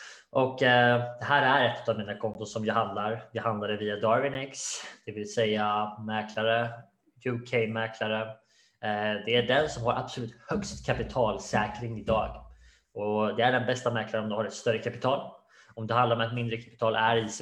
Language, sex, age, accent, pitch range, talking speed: Swedish, male, 20-39, Norwegian, 110-120 Hz, 175 wpm